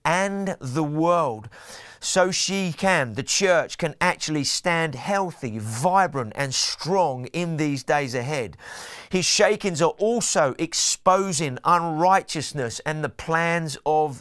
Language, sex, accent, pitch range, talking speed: English, male, British, 140-175 Hz, 125 wpm